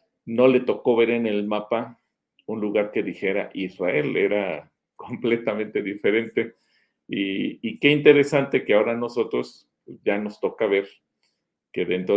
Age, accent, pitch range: 40-59, Mexican, 95-115 Hz